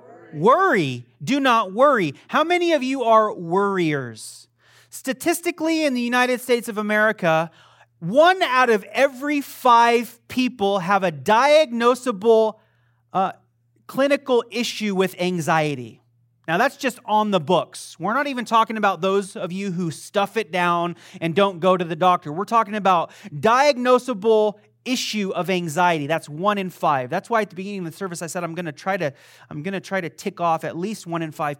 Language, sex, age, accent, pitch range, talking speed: English, male, 30-49, American, 170-235 Hz, 175 wpm